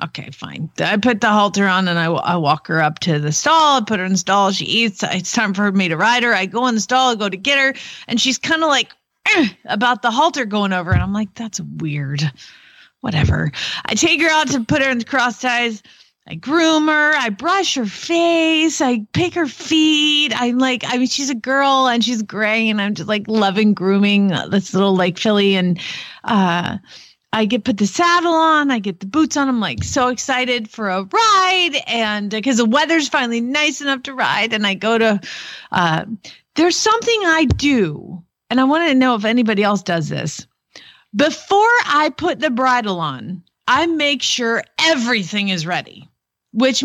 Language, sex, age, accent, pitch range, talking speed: English, female, 30-49, American, 200-295 Hz, 205 wpm